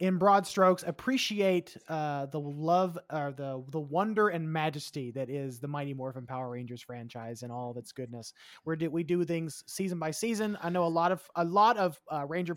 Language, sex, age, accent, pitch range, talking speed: English, male, 20-39, American, 150-180 Hz, 215 wpm